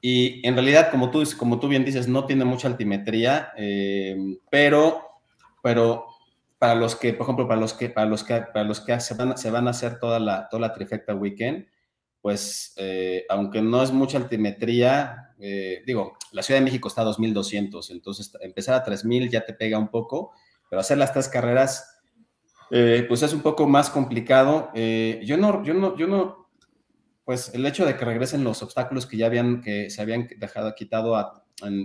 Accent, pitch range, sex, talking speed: Mexican, 110-130 Hz, male, 195 wpm